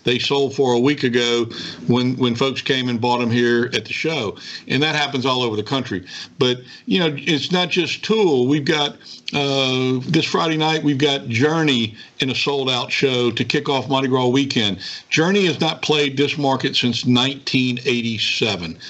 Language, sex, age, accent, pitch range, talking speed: English, male, 50-69, American, 120-145 Hz, 185 wpm